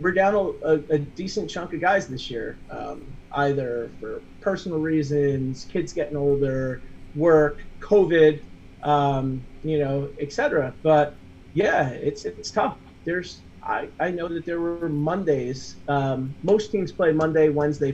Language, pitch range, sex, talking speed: English, 135-165 Hz, male, 145 wpm